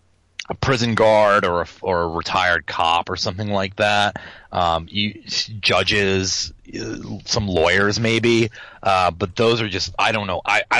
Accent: American